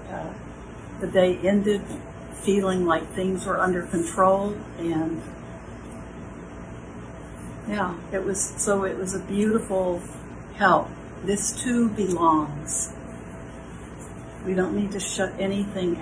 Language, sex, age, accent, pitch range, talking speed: English, female, 60-79, American, 165-205 Hz, 105 wpm